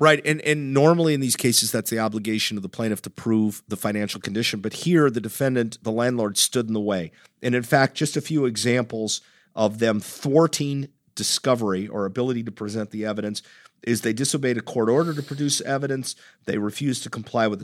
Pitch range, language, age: 110-140 Hz, English, 50-69